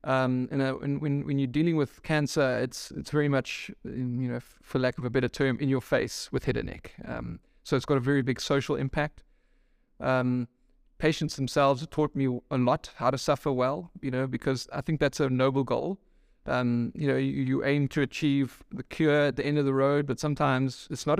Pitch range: 130-150 Hz